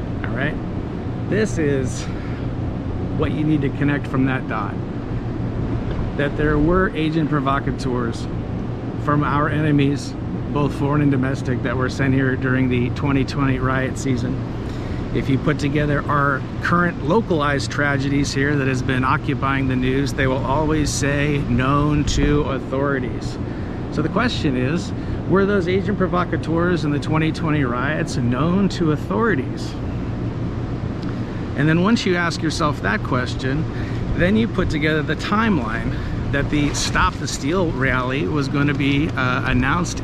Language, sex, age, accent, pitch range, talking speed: English, male, 50-69, American, 130-155 Hz, 140 wpm